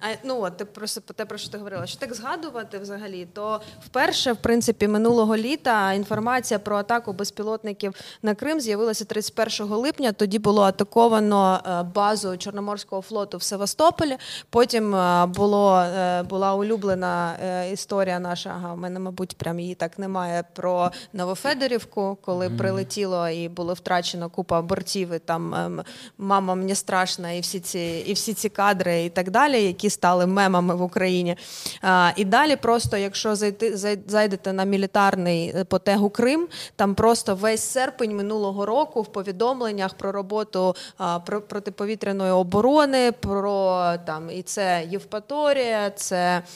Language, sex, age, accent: Ukrainian, female, 20-39, native